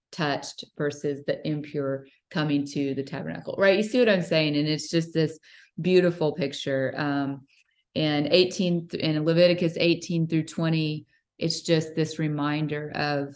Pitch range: 140-155 Hz